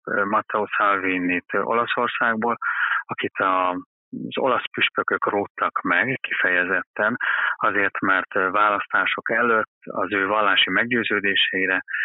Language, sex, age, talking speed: Hungarian, male, 30-49, 90 wpm